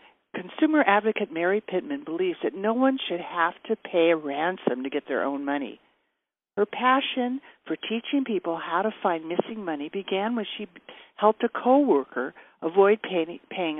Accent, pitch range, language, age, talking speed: American, 170-260 Hz, English, 50-69, 165 wpm